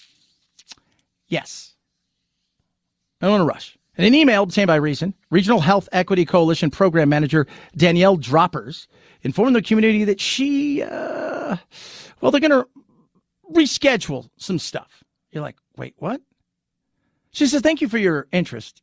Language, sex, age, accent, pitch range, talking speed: English, male, 50-69, American, 165-230 Hz, 140 wpm